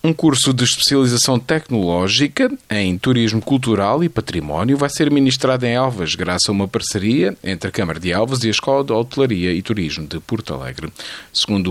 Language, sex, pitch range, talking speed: Portuguese, male, 90-130 Hz, 180 wpm